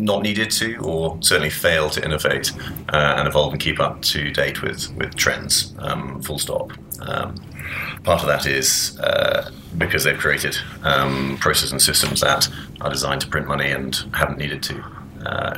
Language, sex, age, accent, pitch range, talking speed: English, male, 30-49, British, 70-80 Hz, 175 wpm